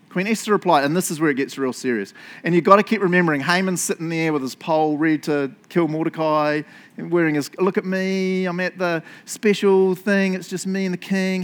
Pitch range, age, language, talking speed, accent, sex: 160-225 Hz, 30-49, English, 230 wpm, Australian, male